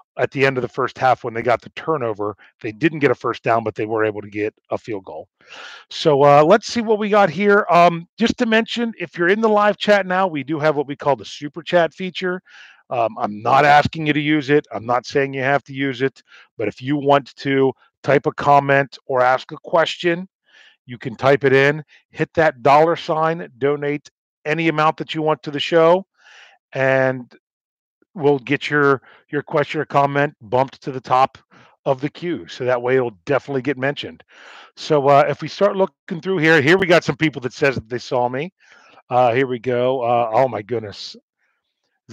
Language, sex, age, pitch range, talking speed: English, male, 40-59, 130-165 Hz, 215 wpm